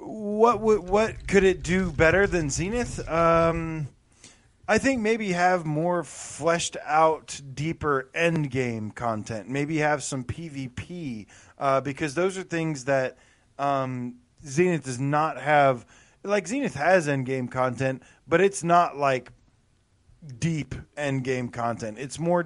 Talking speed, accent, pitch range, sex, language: 140 wpm, American, 125-165 Hz, male, English